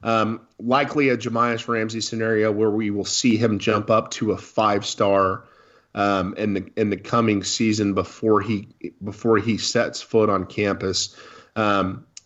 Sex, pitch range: male, 100-120 Hz